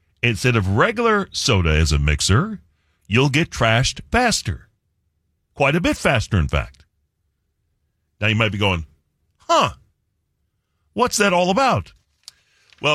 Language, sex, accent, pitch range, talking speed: English, male, American, 90-135 Hz, 130 wpm